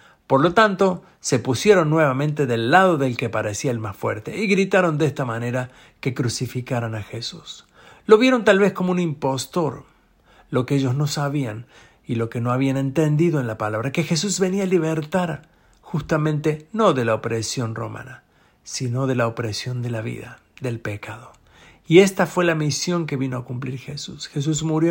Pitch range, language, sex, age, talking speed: 125-165 Hz, Spanish, male, 50-69, 185 wpm